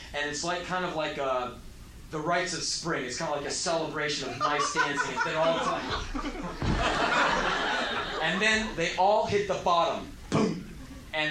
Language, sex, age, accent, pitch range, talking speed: English, male, 30-49, American, 125-155 Hz, 180 wpm